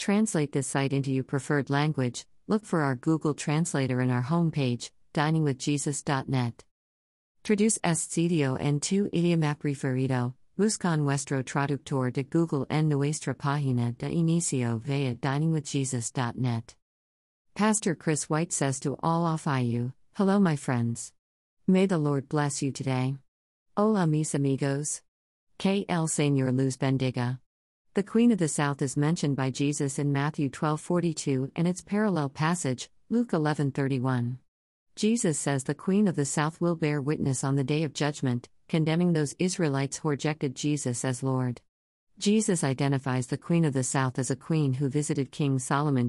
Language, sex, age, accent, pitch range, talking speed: English, female, 50-69, American, 130-160 Hz, 150 wpm